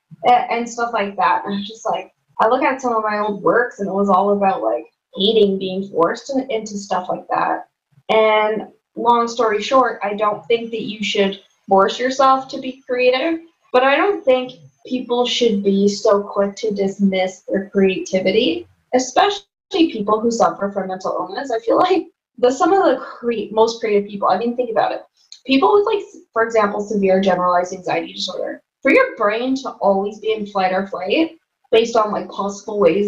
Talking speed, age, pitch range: 190 wpm, 20-39, 200-255 Hz